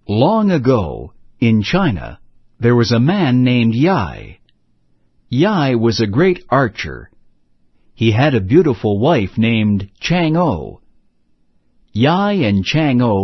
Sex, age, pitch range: male, 60-79, 100-150 Hz